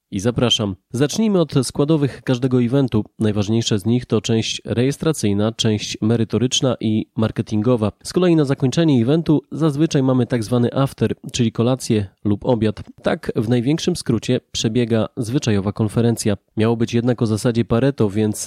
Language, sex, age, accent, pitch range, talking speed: Polish, male, 20-39, native, 110-130 Hz, 145 wpm